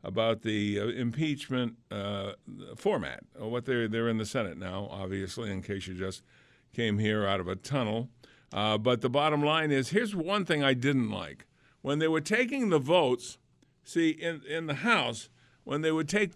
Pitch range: 115-150 Hz